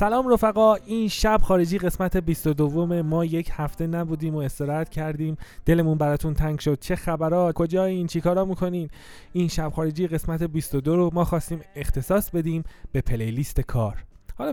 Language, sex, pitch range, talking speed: Persian, male, 125-165 Hz, 160 wpm